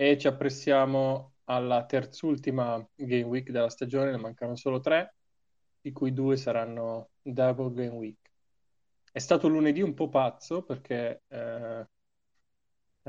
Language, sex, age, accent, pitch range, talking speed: Italian, male, 20-39, native, 120-135 Hz, 130 wpm